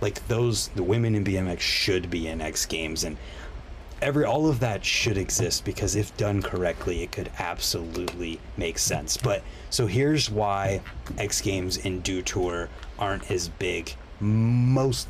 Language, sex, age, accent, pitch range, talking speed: English, male, 30-49, American, 90-115 Hz, 160 wpm